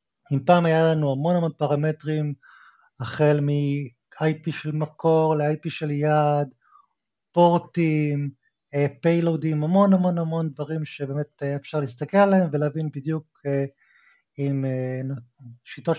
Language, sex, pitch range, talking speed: Hebrew, male, 135-180 Hz, 105 wpm